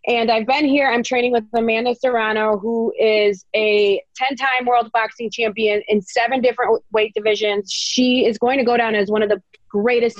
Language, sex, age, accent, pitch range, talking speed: English, female, 20-39, American, 220-270 Hz, 190 wpm